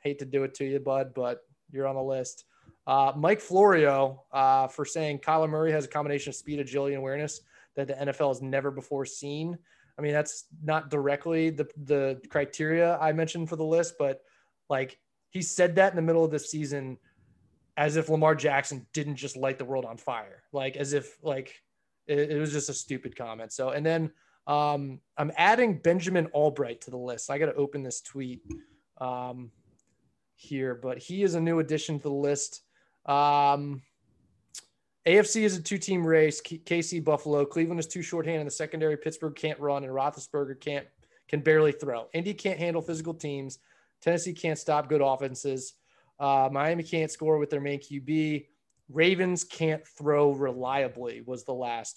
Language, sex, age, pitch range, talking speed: English, male, 20-39, 135-160 Hz, 180 wpm